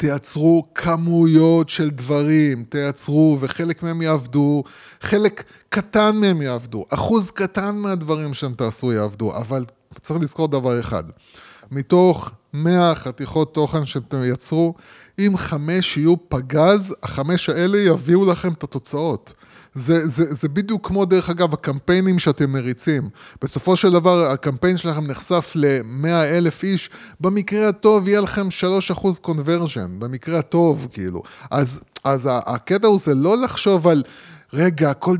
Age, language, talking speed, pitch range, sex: 20-39, Hebrew, 130 wpm, 140-175 Hz, male